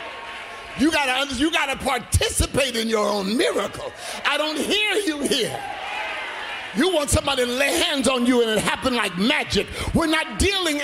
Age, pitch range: 50-69, 235-315 Hz